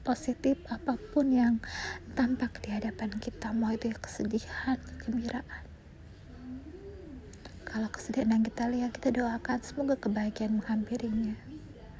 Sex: female